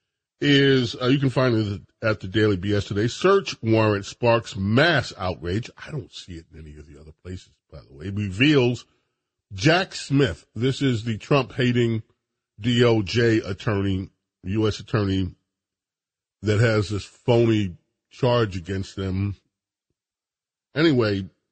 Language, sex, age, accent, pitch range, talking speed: English, male, 40-59, American, 100-125 Hz, 135 wpm